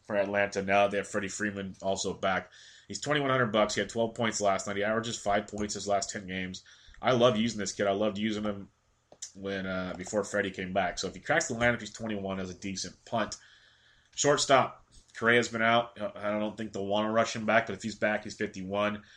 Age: 30-49